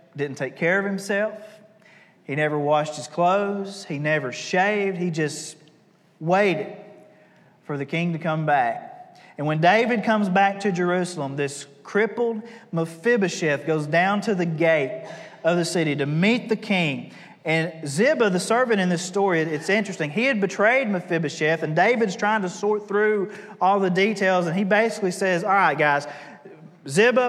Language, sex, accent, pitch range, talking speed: English, male, American, 165-210 Hz, 165 wpm